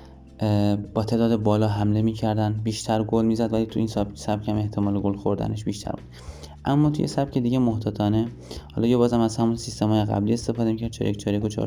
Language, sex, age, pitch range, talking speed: Persian, male, 20-39, 100-115 Hz, 190 wpm